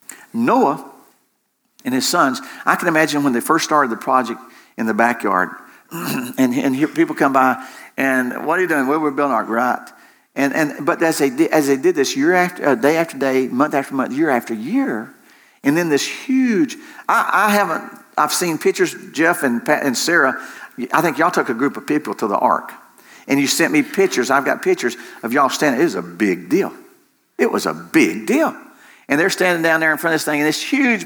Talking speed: 220 wpm